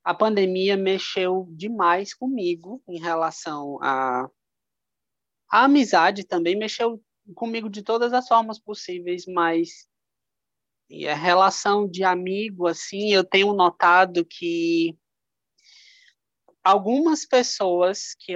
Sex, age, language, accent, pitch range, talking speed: male, 20-39, Portuguese, Brazilian, 165-245 Hz, 105 wpm